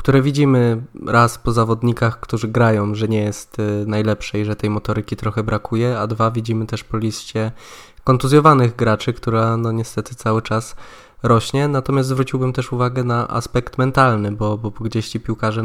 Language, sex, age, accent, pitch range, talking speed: Polish, male, 20-39, native, 110-120 Hz, 165 wpm